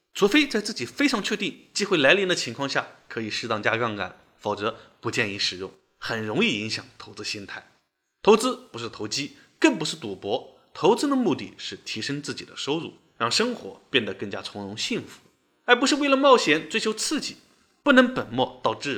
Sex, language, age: male, Chinese, 20-39